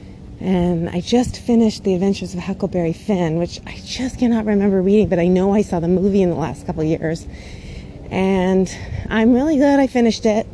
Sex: female